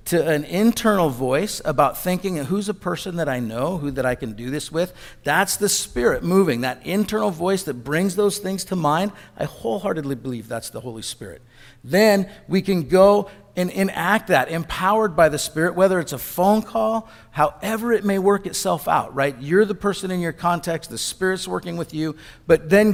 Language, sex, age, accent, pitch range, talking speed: English, male, 50-69, American, 145-205 Hz, 200 wpm